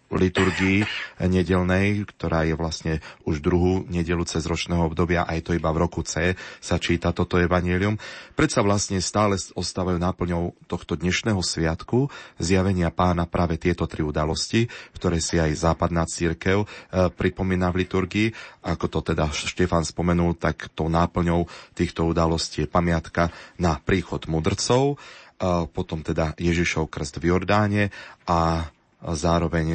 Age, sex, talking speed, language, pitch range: 30-49, male, 135 wpm, Slovak, 80-95 Hz